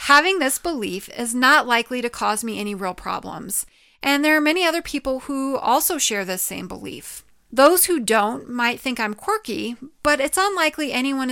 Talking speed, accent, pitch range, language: 185 wpm, American, 215-285 Hz, English